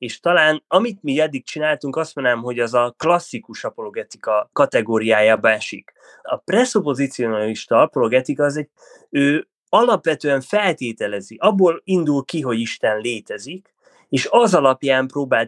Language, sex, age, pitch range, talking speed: Hungarian, male, 20-39, 120-170 Hz, 130 wpm